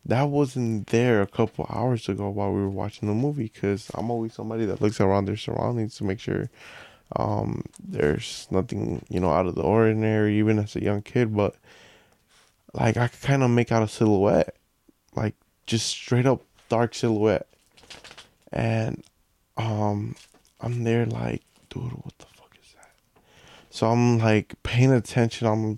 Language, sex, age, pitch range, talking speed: English, male, 20-39, 105-120 Hz, 165 wpm